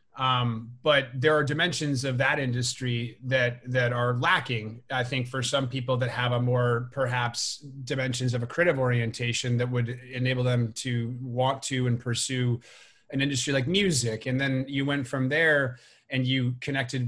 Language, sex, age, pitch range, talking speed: English, male, 30-49, 120-130 Hz, 170 wpm